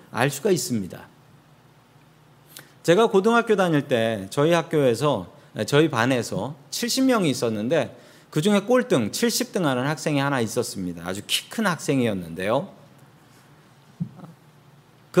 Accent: native